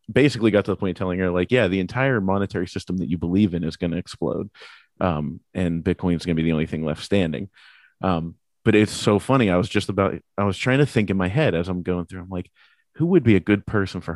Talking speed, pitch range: 270 wpm, 90-115 Hz